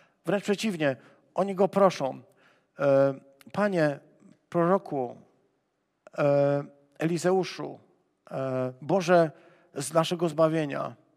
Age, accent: 50-69, native